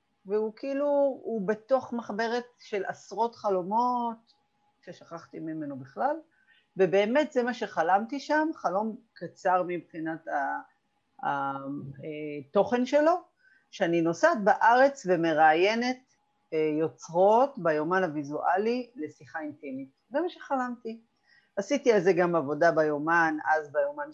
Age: 40-59